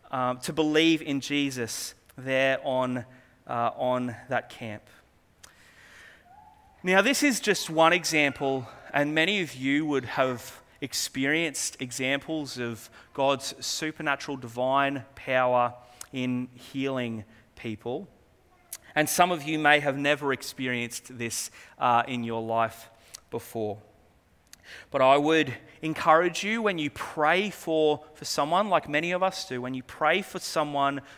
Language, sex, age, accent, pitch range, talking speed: English, male, 30-49, Australian, 125-160 Hz, 130 wpm